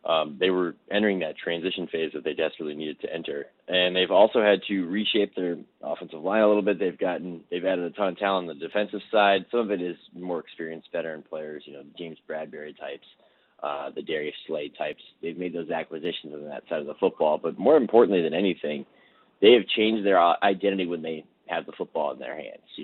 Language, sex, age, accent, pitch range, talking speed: English, male, 30-49, American, 85-105 Hz, 220 wpm